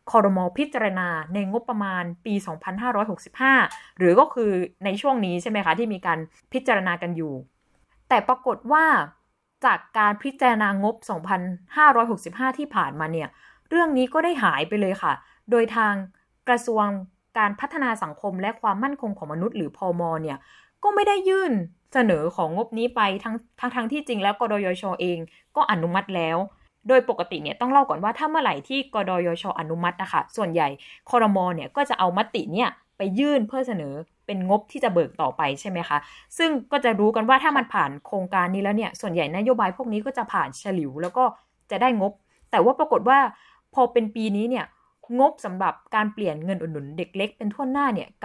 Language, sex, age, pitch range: Thai, female, 20-39, 180-255 Hz